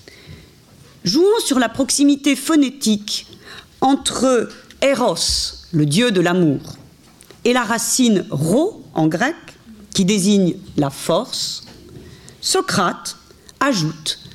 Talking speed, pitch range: 95 wpm, 175-285 Hz